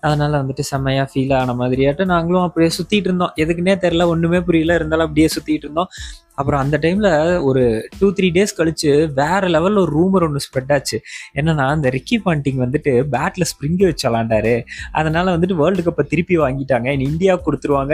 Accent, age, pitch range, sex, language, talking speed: native, 20-39, 135-175 Hz, male, Tamil, 170 wpm